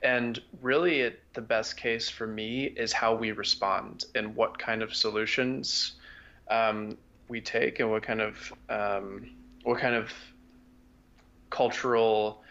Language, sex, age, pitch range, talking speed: English, male, 20-39, 110-125 Hz, 140 wpm